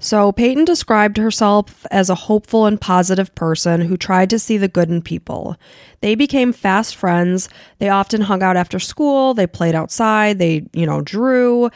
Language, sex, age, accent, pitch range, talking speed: English, female, 20-39, American, 175-210 Hz, 180 wpm